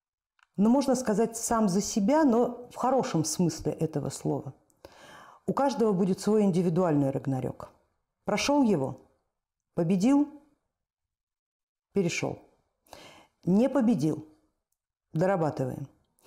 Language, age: Russian, 50-69